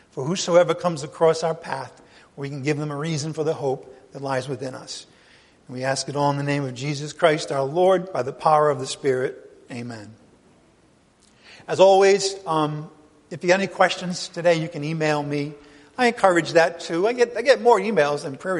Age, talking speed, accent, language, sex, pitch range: 50-69, 205 wpm, American, English, male, 150-215 Hz